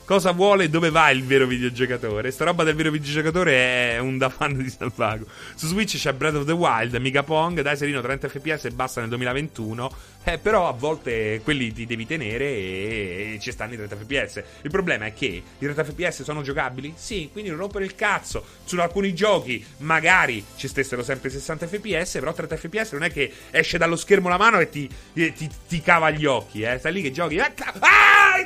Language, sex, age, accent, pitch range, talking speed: Italian, male, 30-49, native, 130-200 Hz, 220 wpm